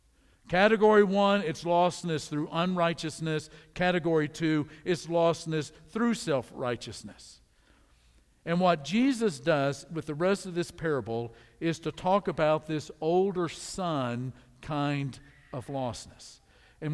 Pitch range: 145-185 Hz